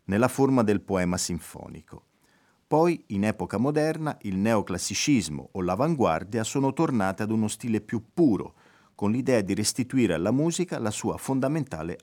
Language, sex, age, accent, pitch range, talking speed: Italian, male, 50-69, native, 90-120 Hz, 145 wpm